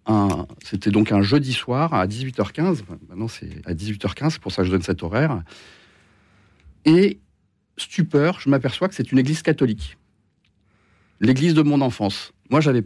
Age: 50-69